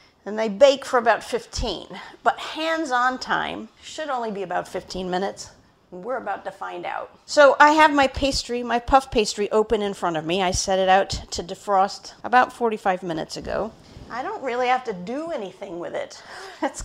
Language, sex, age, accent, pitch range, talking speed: English, female, 50-69, American, 190-245 Hz, 190 wpm